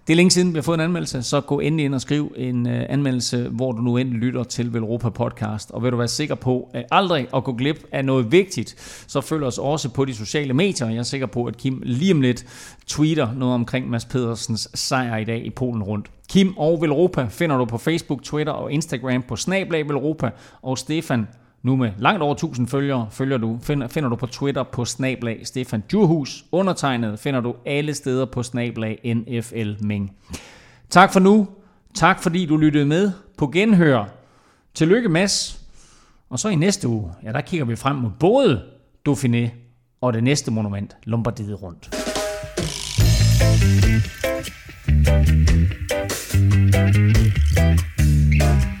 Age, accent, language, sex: 30-49, native, Danish, male